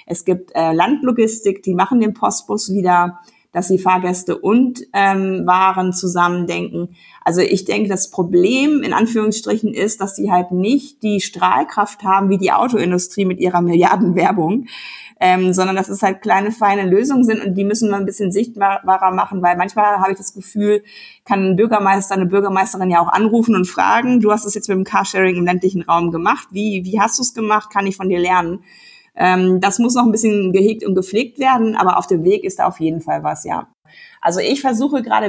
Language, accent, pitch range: German, German, 185-220 Hz